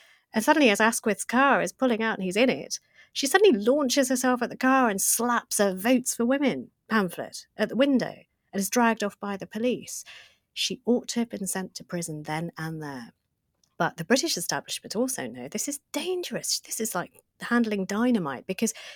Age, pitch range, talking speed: 30-49, 175-235 Hz, 195 wpm